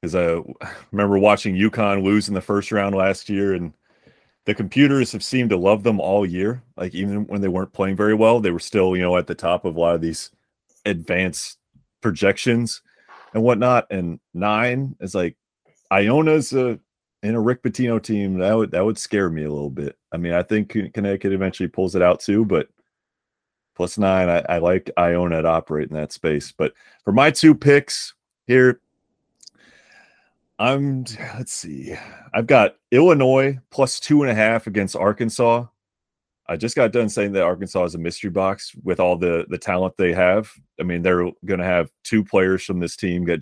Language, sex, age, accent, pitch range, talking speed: English, male, 30-49, American, 85-110 Hz, 190 wpm